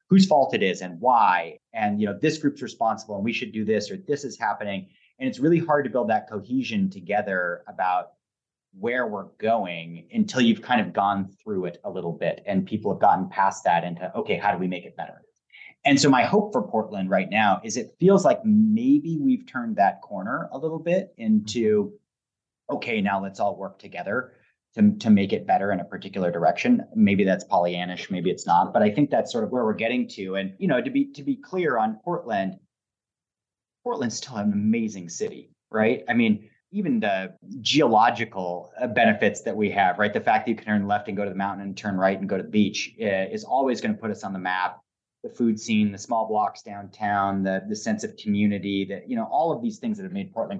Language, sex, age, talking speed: English, male, 30-49, 225 wpm